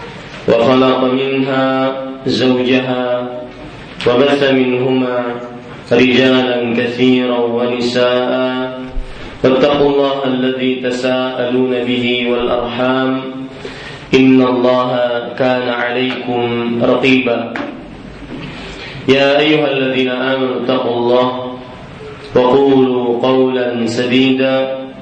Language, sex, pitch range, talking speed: Malay, male, 125-130 Hz, 65 wpm